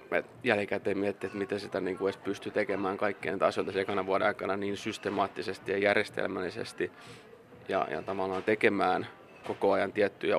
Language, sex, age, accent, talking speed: Finnish, male, 20-39, native, 145 wpm